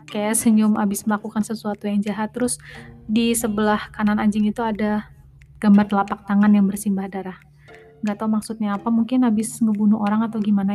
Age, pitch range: 30-49, 205-235 Hz